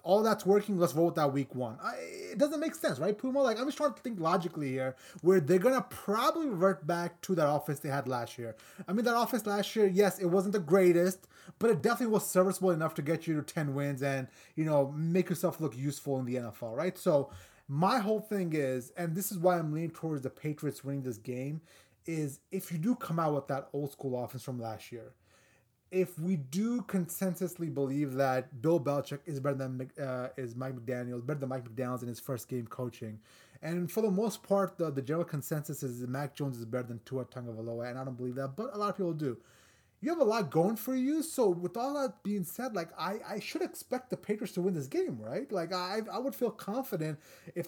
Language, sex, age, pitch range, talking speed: English, male, 20-39, 135-195 Hz, 235 wpm